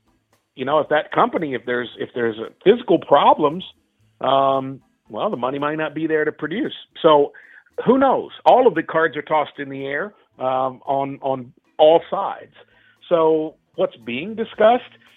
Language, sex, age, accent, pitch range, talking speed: English, male, 50-69, American, 125-155 Hz, 170 wpm